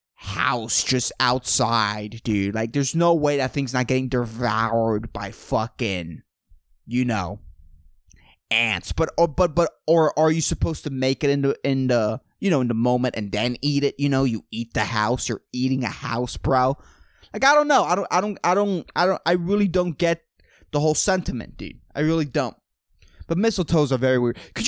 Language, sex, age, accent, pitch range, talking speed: English, male, 20-39, American, 120-150 Hz, 200 wpm